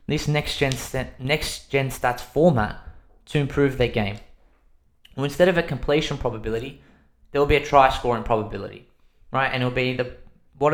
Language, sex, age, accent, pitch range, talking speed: English, male, 20-39, Australian, 115-145 Hz, 160 wpm